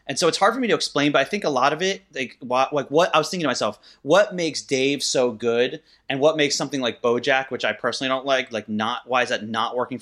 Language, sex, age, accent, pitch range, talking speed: English, male, 30-49, American, 125-150 Hz, 280 wpm